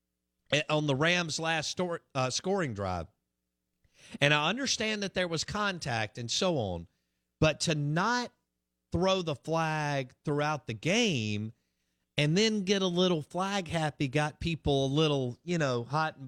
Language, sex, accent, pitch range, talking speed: English, male, American, 100-160 Hz, 150 wpm